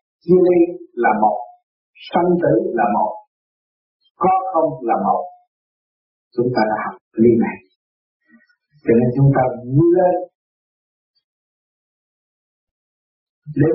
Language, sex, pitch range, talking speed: Vietnamese, male, 125-190 Hz, 100 wpm